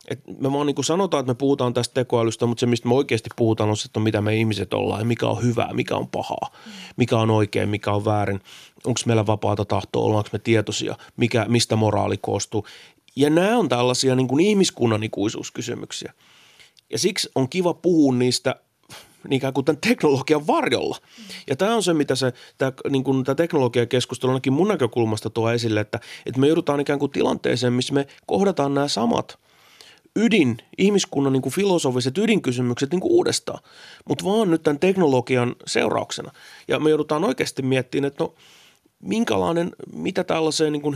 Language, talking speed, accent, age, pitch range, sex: Finnish, 170 wpm, native, 30-49, 115-155 Hz, male